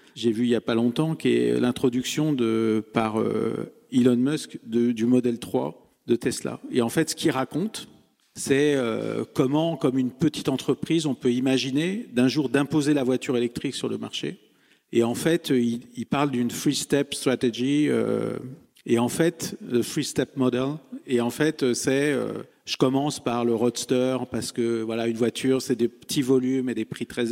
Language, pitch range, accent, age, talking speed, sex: French, 120-145 Hz, French, 50-69, 190 wpm, male